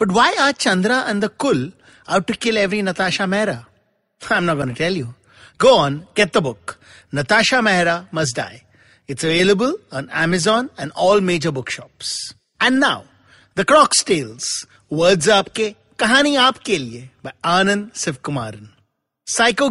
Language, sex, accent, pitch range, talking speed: English, male, Indian, 140-230 Hz, 155 wpm